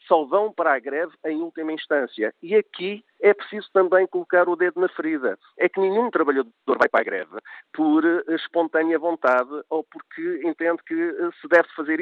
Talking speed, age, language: 175 wpm, 50-69, Portuguese